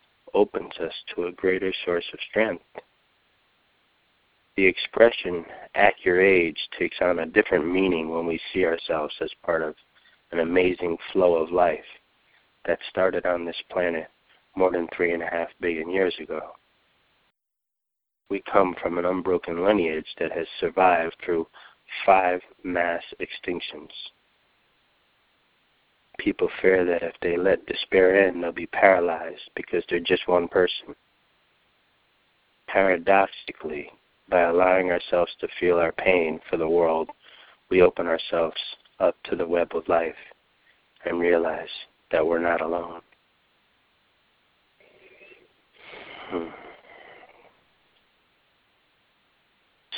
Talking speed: 120 wpm